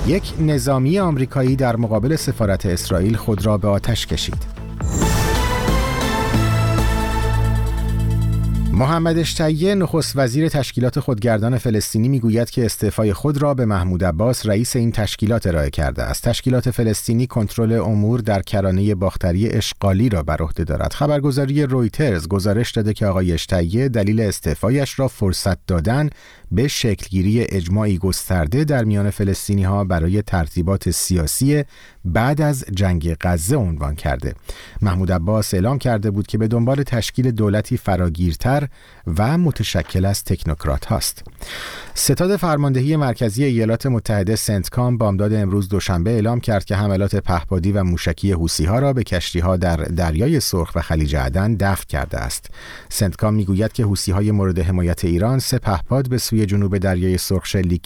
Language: Persian